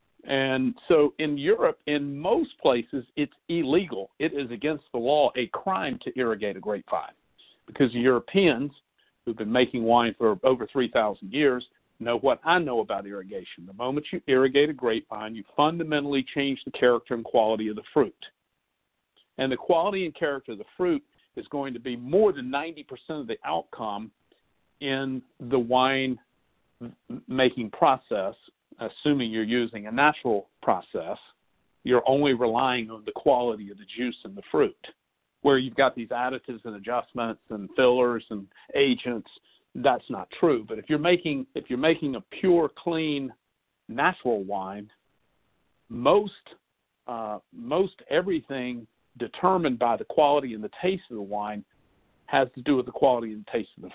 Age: 50-69